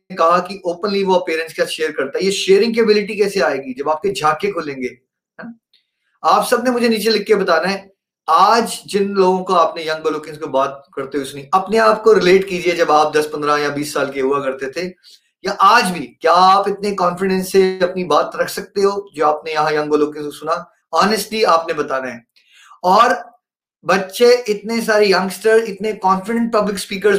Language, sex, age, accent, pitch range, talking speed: Hindi, male, 30-49, native, 175-225 Hz, 180 wpm